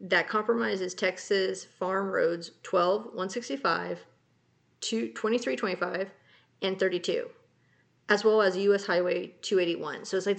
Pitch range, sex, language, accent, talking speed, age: 180-230 Hz, female, English, American, 110 wpm, 30-49